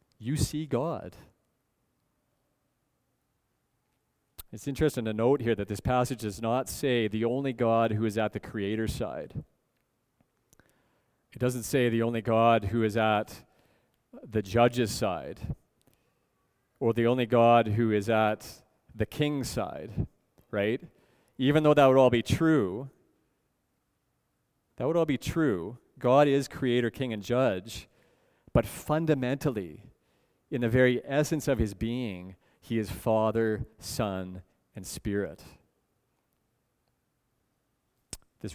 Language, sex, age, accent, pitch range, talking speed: English, male, 40-59, American, 110-130 Hz, 125 wpm